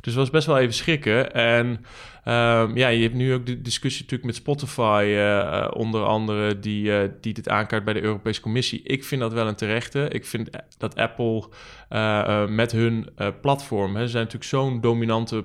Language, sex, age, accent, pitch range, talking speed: Dutch, male, 20-39, Dutch, 110-135 Hz, 195 wpm